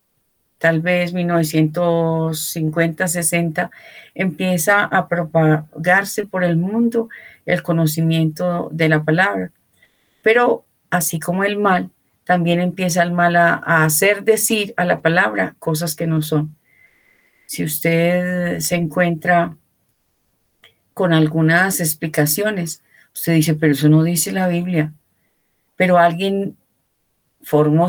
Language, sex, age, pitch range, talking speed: Spanish, female, 40-59, 155-185 Hz, 115 wpm